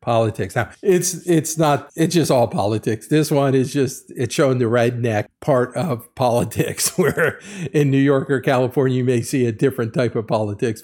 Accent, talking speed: American, 190 wpm